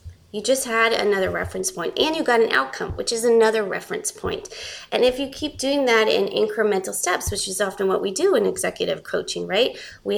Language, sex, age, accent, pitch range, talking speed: English, female, 20-39, American, 190-255 Hz, 210 wpm